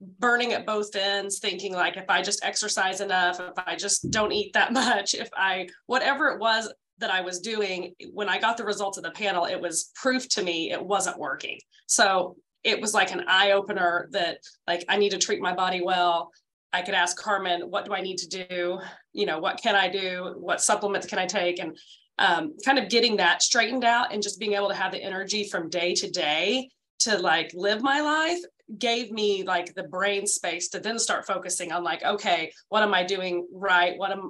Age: 20-39